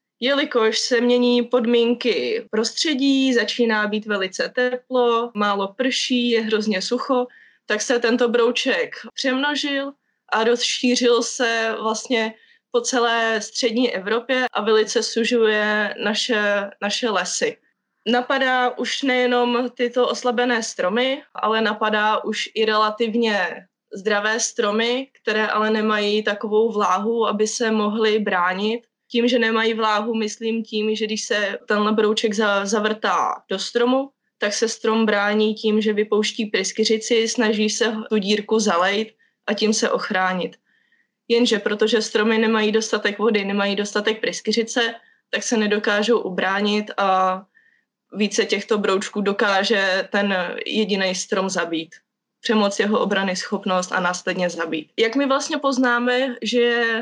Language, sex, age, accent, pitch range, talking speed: Czech, female, 20-39, native, 210-240 Hz, 125 wpm